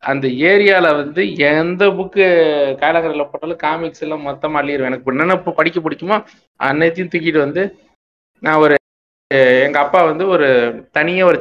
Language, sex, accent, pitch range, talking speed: Tamil, male, native, 145-180 Hz, 145 wpm